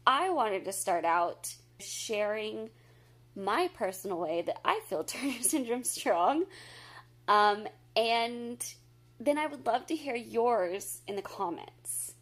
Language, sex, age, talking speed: English, female, 20-39, 135 wpm